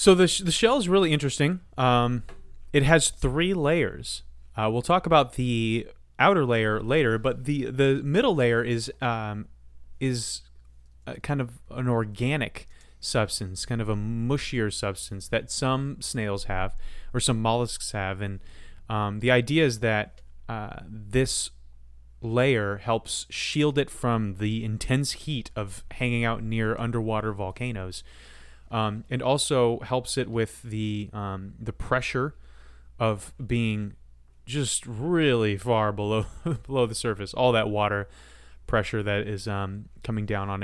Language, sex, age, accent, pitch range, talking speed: English, male, 30-49, American, 95-130 Hz, 145 wpm